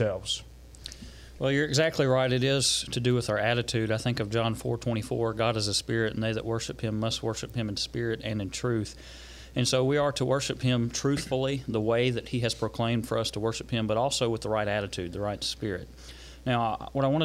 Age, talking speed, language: 40-59, 235 wpm, English